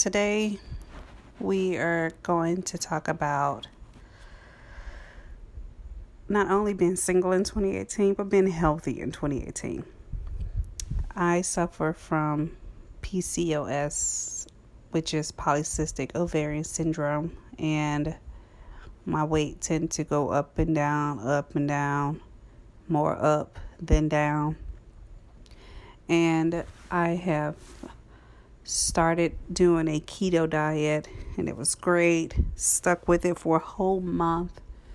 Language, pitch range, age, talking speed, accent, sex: English, 140-170 Hz, 30-49, 105 wpm, American, female